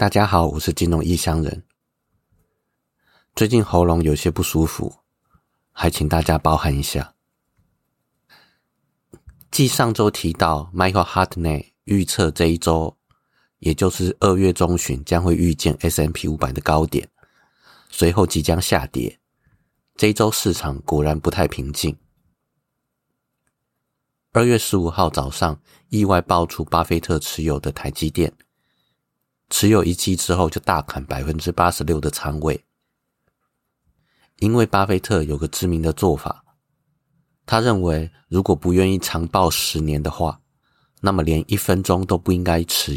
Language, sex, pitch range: Chinese, male, 80-100 Hz